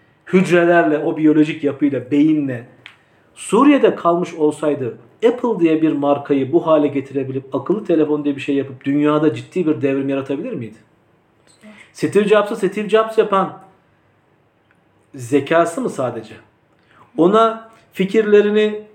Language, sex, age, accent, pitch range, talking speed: Turkish, male, 50-69, native, 145-185 Hz, 115 wpm